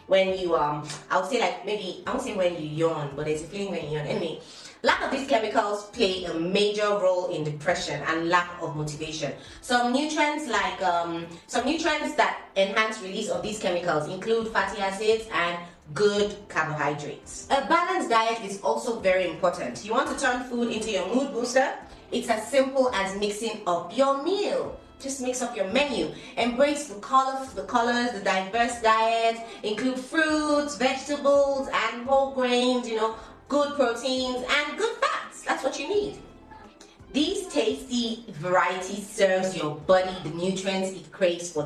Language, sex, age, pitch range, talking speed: English, female, 30-49, 175-255 Hz, 170 wpm